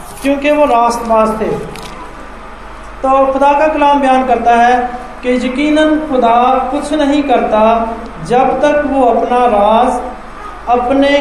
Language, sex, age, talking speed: Hindi, male, 40-59, 125 wpm